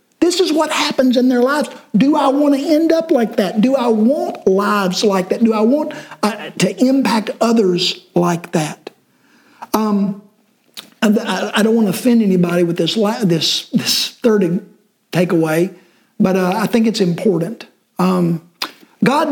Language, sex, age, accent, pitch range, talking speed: English, male, 50-69, American, 180-255 Hz, 160 wpm